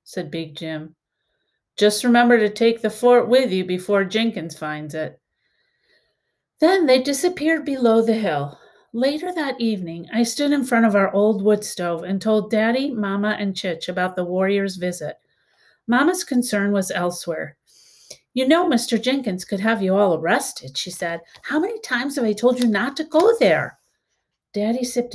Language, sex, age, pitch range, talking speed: English, female, 50-69, 180-250 Hz, 170 wpm